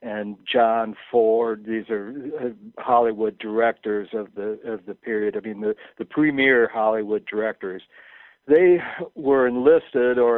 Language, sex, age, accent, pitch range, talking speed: English, male, 60-79, American, 110-140 Hz, 135 wpm